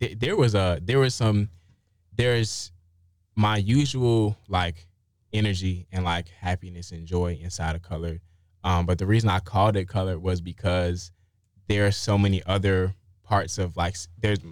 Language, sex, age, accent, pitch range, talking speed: English, male, 20-39, American, 90-110 Hz, 155 wpm